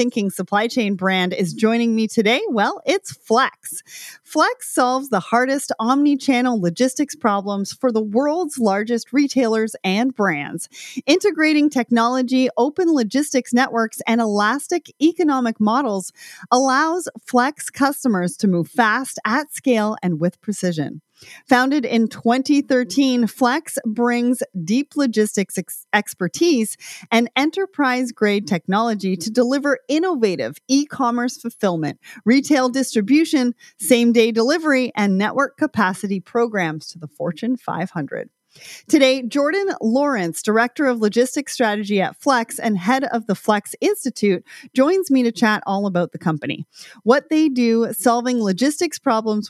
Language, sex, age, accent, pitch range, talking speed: English, female, 30-49, American, 200-270 Hz, 120 wpm